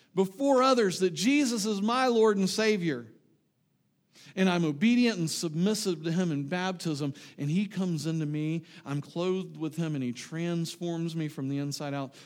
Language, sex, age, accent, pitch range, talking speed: English, male, 50-69, American, 140-195 Hz, 170 wpm